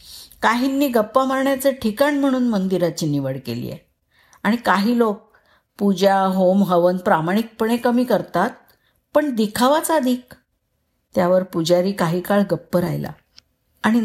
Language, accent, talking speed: Marathi, native, 125 wpm